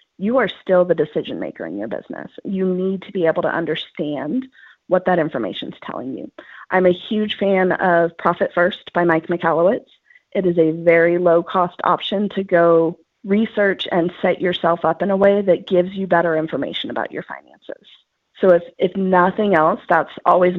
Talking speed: 185 wpm